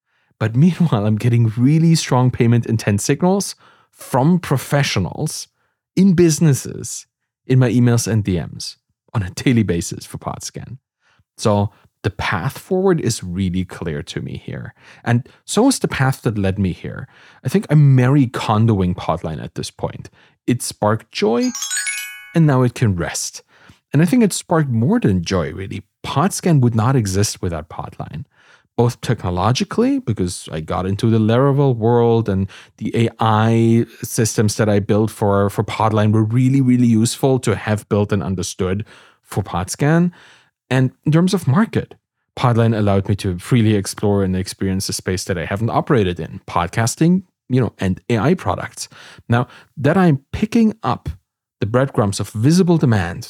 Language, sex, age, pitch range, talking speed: English, male, 30-49, 100-135 Hz, 160 wpm